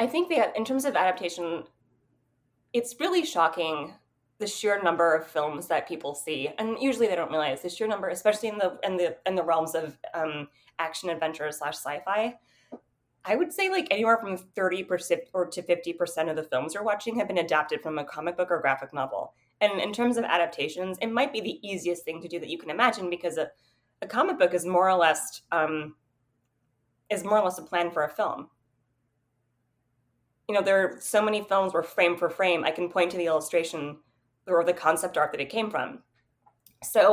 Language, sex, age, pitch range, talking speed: English, female, 20-39, 155-205 Hz, 210 wpm